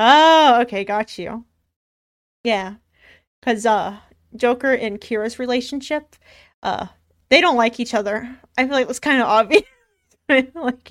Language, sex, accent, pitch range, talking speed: English, female, American, 215-265 Hz, 155 wpm